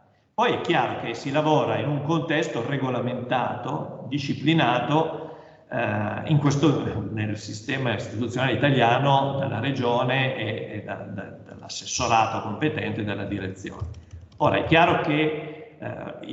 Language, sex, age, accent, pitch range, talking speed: Italian, male, 50-69, native, 105-130 Hz, 120 wpm